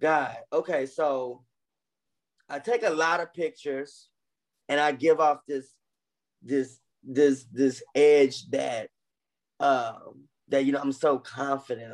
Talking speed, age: 130 wpm, 20-39